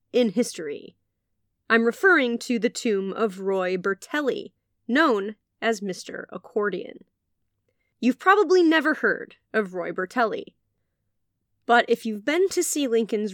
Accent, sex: American, female